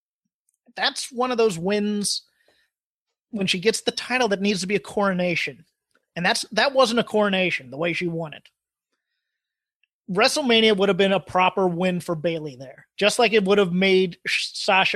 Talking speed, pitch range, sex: 175 wpm, 170-205 Hz, male